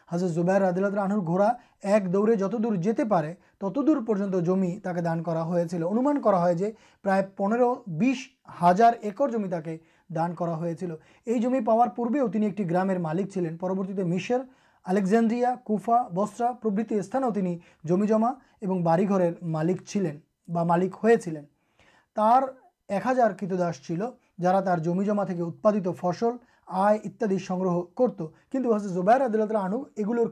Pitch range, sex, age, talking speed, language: 180-225 Hz, male, 30-49, 110 wpm, Urdu